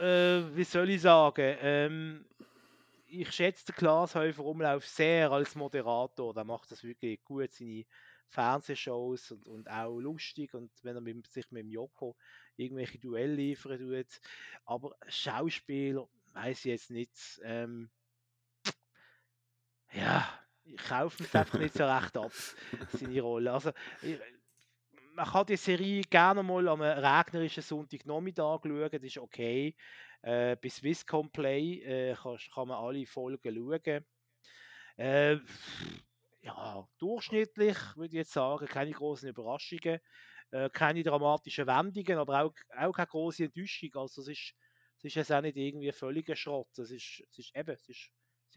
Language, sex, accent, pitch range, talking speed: German, male, Austrian, 125-160 Hz, 145 wpm